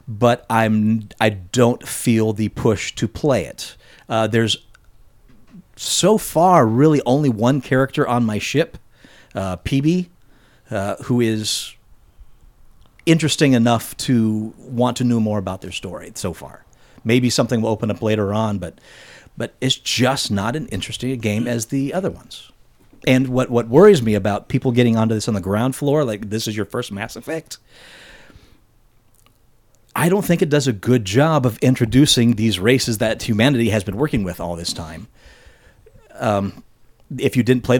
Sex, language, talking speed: male, English, 165 wpm